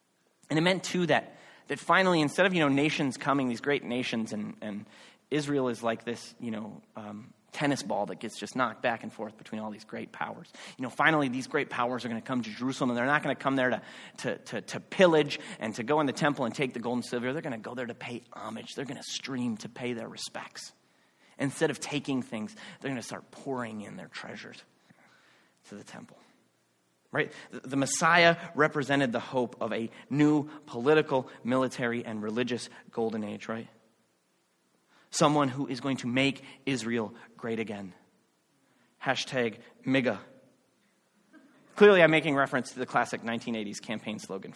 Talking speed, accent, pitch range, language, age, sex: 195 wpm, American, 115-150 Hz, English, 30-49, male